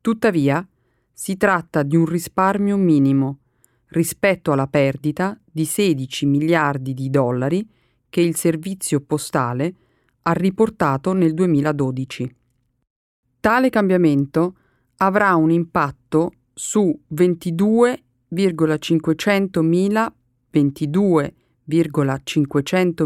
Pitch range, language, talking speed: 140-185 Hz, Italian, 80 wpm